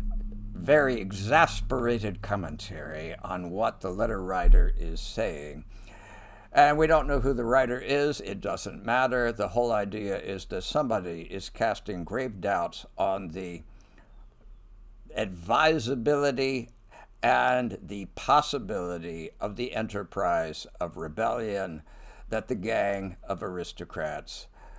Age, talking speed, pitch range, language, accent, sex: 60-79, 115 wpm, 90-125 Hz, English, American, male